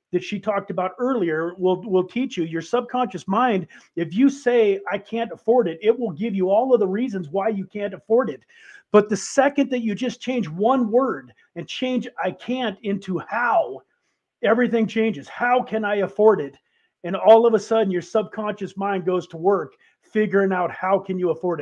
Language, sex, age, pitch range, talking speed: English, male, 40-59, 180-225 Hz, 195 wpm